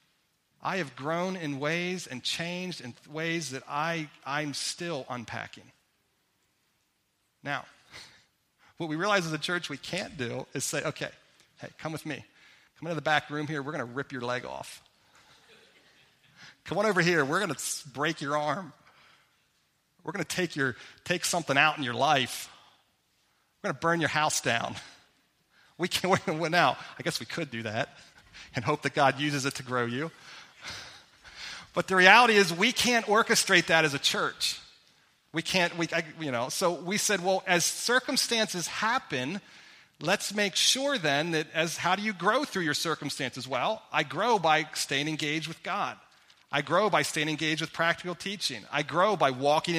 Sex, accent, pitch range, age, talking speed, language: male, American, 145-180 Hz, 40-59, 175 wpm, English